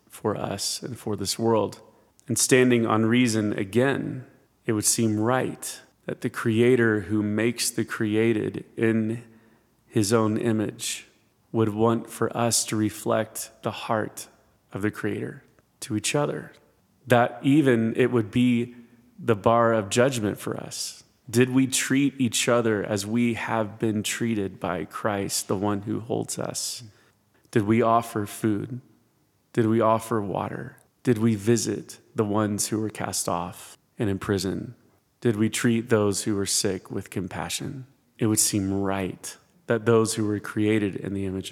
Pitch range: 100-120 Hz